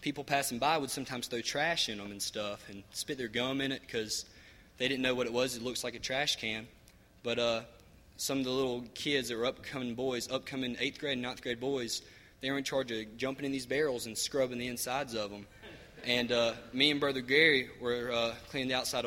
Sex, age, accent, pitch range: male, 20-39, American, 110-135 Hz